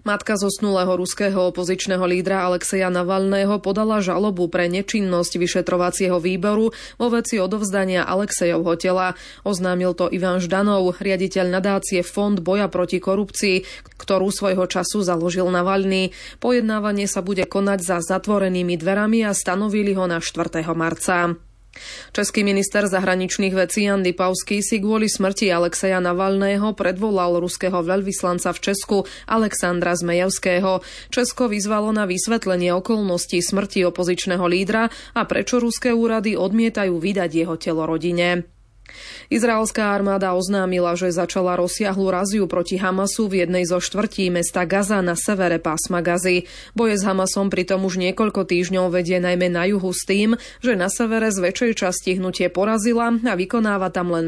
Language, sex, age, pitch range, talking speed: Slovak, female, 20-39, 180-205 Hz, 140 wpm